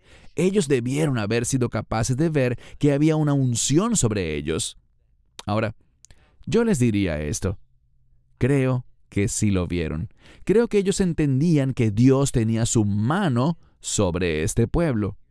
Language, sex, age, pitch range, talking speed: English, male, 30-49, 105-165 Hz, 140 wpm